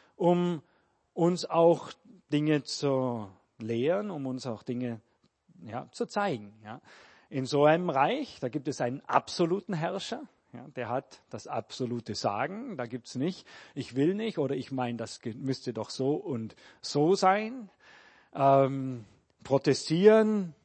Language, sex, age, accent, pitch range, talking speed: German, male, 40-59, German, 125-180 Hz, 140 wpm